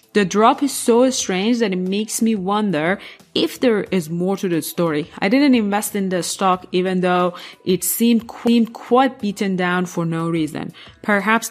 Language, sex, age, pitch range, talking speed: English, female, 20-39, 170-215 Hz, 175 wpm